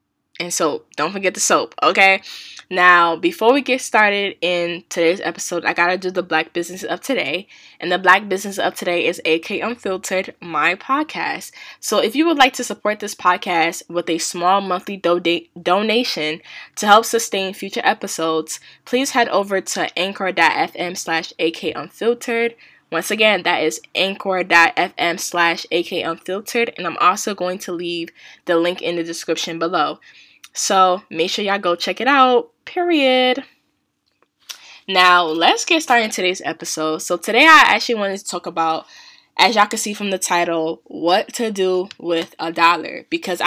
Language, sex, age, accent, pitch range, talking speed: English, female, 10-29, American, 170-215 Hz, 165 wpm